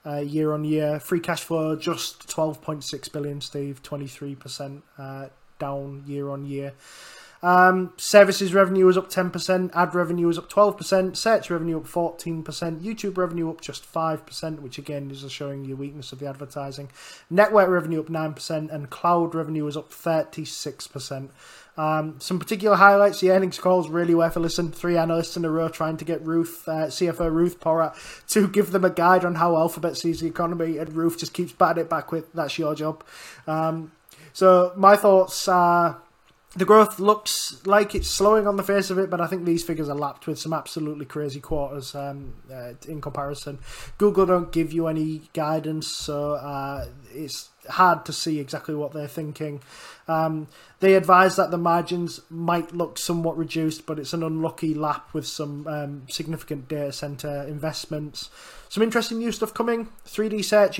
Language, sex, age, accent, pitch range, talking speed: English, male, 20-39, British, 150-185 Hz, 180 wpm